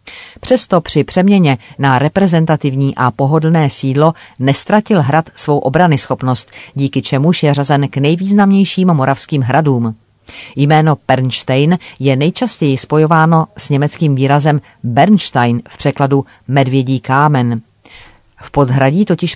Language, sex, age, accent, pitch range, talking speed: Czech, female, 40-59, native, 130-160 Hz, 115 wpm